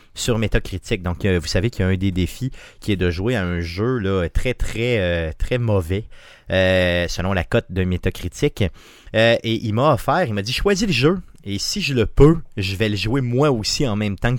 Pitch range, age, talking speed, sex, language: 100-135 Hz, 30-49, 225 wpm, male, French